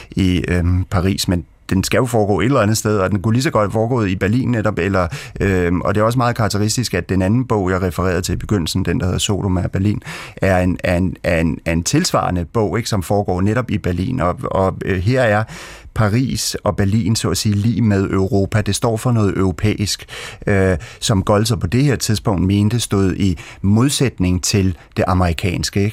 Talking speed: 210 wpm